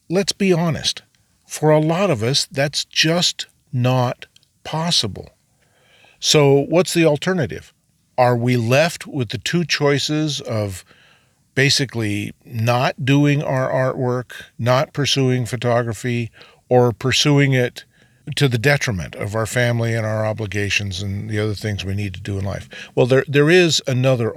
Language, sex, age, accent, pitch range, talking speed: English, male, 50-69, American, 115-145 Hz, 145 wpm